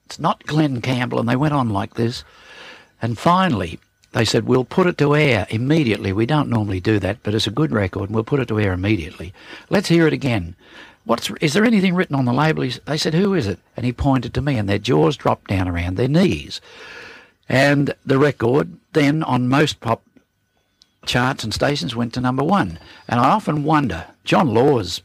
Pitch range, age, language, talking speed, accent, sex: 100-135 Hz, 60-79, English, 210 wpm, Australian, male